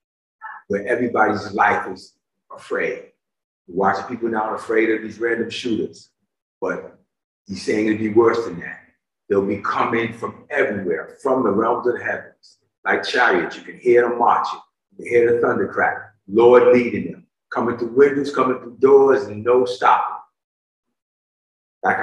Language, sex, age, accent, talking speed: English, male, 40-59, American, 155 wpm